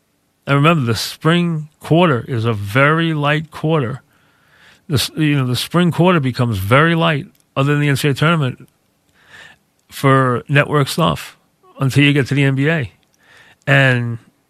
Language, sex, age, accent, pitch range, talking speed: English, male, 40-59, American, 125-150 Hz, 130 wpm